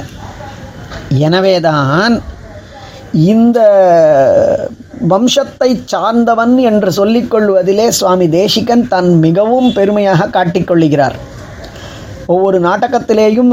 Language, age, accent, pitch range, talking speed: Tamil, 20-39, native, 180-235 Hz, 60 wpm